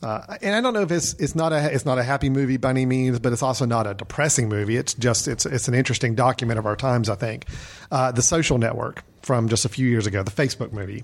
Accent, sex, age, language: American, male, 40-59, English